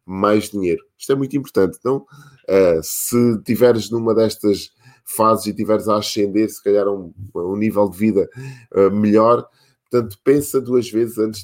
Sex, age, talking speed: male, 20-39, 145 wpm